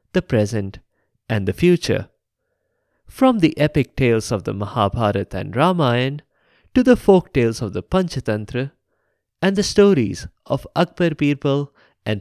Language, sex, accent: English, male, Indian